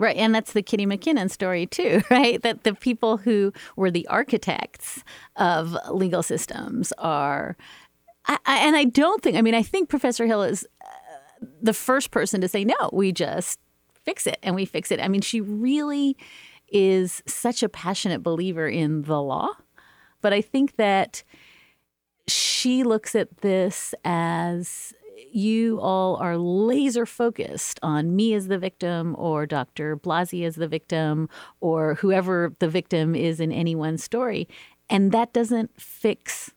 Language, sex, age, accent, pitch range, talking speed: English, female, 40-59, American, 170-230 Hz, 155 wpm